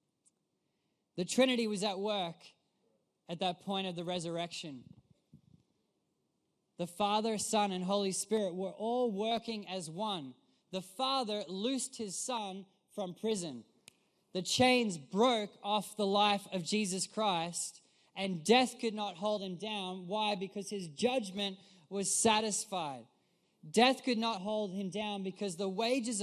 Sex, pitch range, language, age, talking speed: male, 180-215 Hz, English, 20-39, 135 wpm